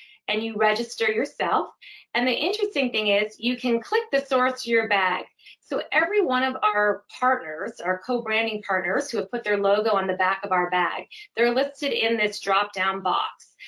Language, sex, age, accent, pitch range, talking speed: English, female, 30-49, American, 200-260 Hz, 195 wpm